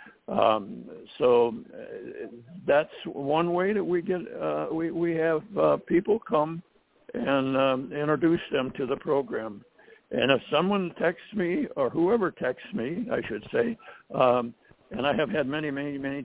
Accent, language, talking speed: American, English, 155 wpm